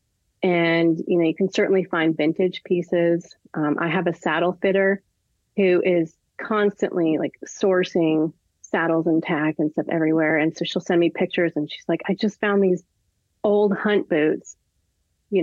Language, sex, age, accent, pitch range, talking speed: English, female, 30-49, American, 165-195 Hz, 165 wpm